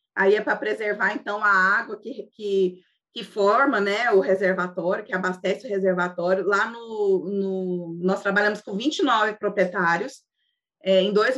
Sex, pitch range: female, 185-230 Hz